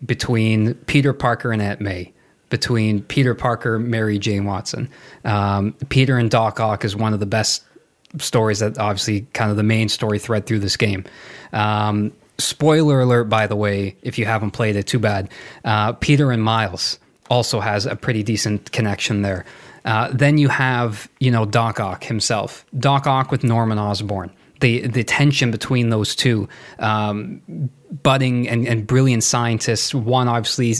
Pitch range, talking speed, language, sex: 105-125 Hz, 170 wpm, English, male